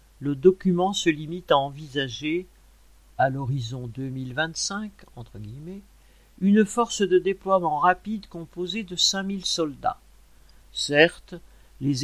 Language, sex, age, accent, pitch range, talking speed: French, male, 50-69, French, 135-180 Hz, 115 wpm